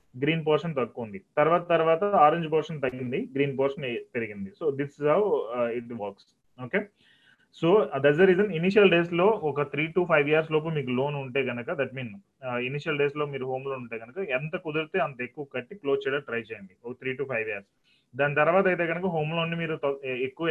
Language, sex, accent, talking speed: Telugu, male, native, 195 wpm